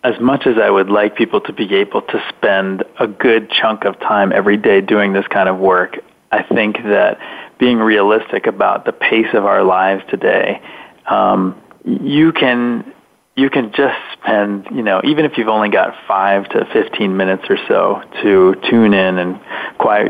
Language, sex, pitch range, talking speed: English, male, 95-110 Hz, 180 wpm